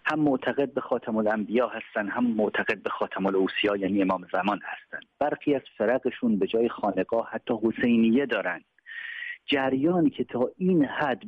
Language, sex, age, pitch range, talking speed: English, male, 40-59, 110-165 Hz, 155 wpm